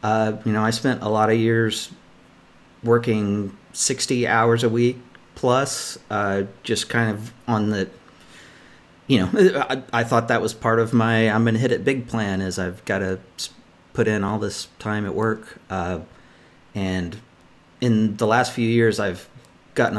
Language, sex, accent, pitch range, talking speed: English, male, American, 95-115 Hz, 175 wpm